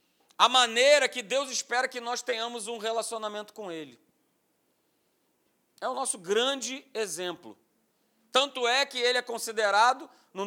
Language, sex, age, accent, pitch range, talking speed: Portuguese, male, 40-59, Brazilian, 230-275 Hz, 140 wpm